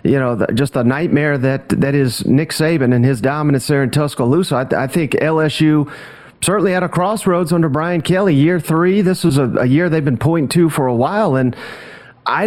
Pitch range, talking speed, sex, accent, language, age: 140-165 Hz, 215 wpm, male, American, English, 40-59